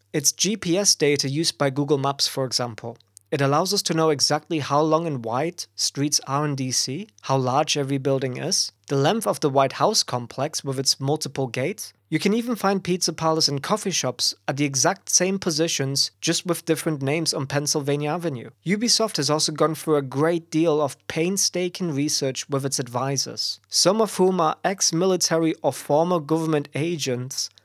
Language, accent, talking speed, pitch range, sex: English, German, 180 wpm, 130-165 Hz, male